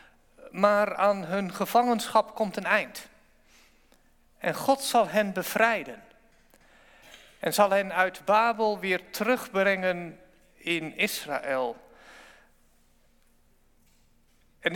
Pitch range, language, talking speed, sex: 195-255 Hz, Dutch, 90 wpm, male